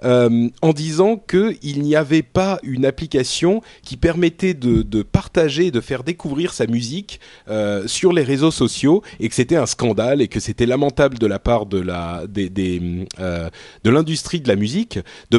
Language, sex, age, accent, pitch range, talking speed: French, male, 30-49, French, 115-175 Hz, 185 wpm